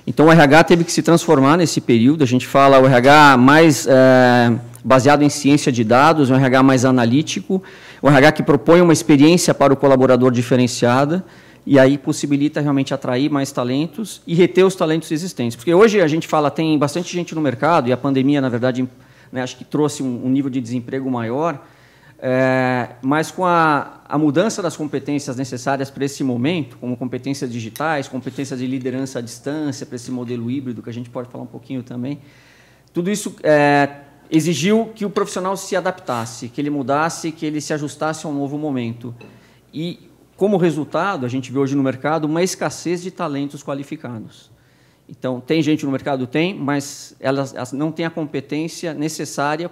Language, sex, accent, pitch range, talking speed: Portuguese, male, Brazilian, 130-160 Hz, 185 wpm